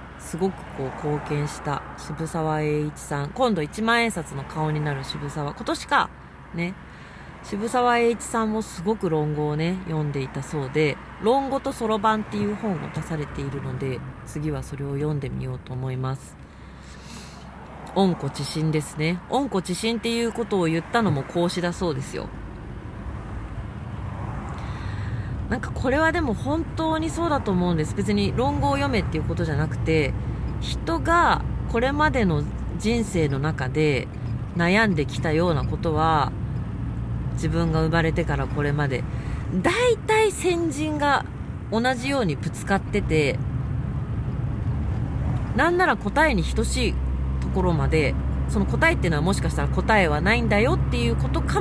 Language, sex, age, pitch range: Japanese, female, 40-59, 105-175 Hz